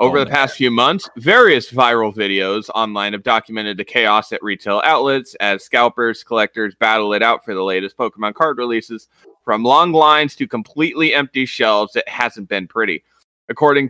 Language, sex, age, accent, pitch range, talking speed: English, male, 30-49, American, 105-145 Hz, 175 wpm